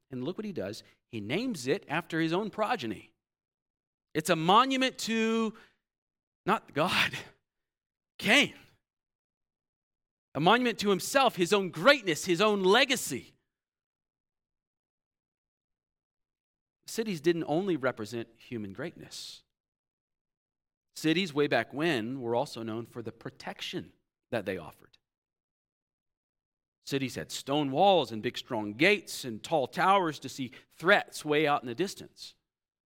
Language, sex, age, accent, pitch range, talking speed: English, male, 40-59, American, 130-200 Hz, 120 wpm